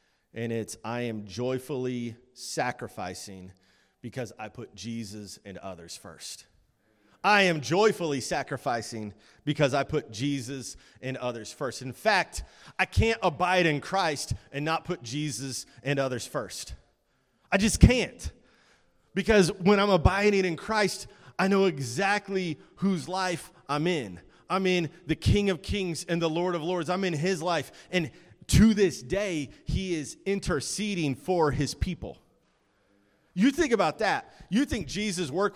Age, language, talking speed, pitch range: 30-49, English, 145 wpm, 130-190 Hz